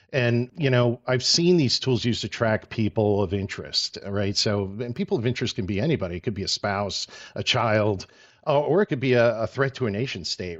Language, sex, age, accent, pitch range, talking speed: English, male, 50-69, American, 100-125 Hz, 230 wpm